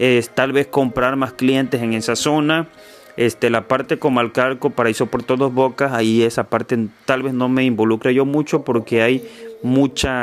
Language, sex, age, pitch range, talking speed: Spanish, male, 30-49, 110-135 Hz, 190 wpm